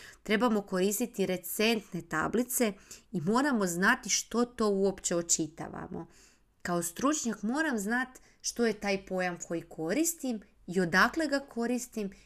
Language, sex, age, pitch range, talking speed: Croatian, female, 30-49, 175-225 Hz, 120 wpm